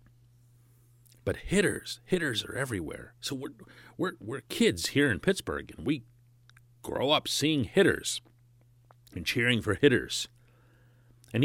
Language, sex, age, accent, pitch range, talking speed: English, male, 40-59, American, 120-145 Hz, 120 wpm